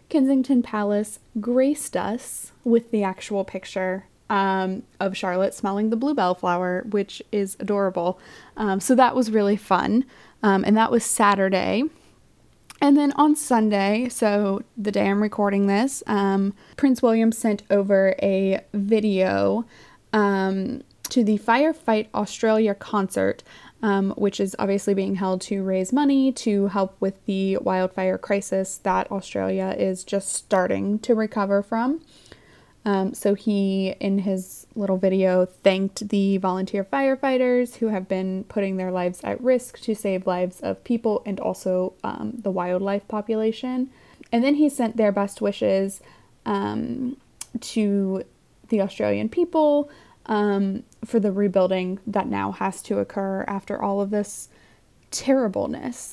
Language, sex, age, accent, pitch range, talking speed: English, female, 10-29, American, 195-240 Hz, 140 wpm